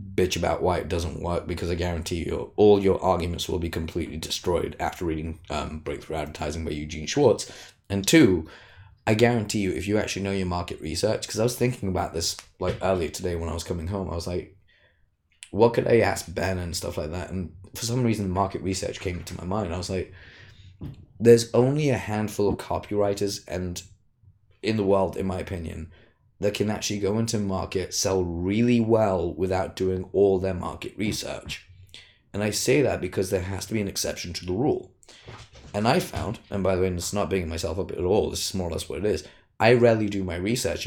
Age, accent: 20-39, British